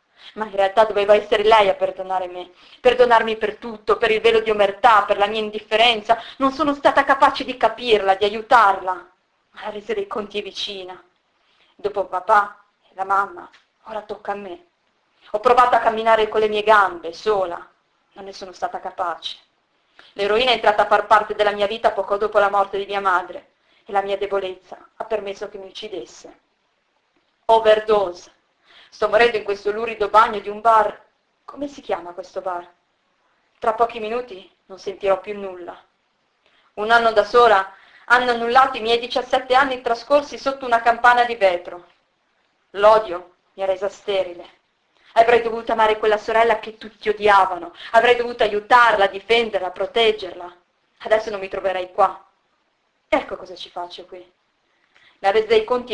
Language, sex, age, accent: Italian, female, 30-49, native